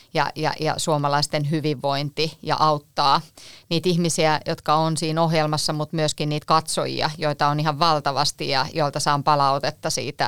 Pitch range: 145-160 Hz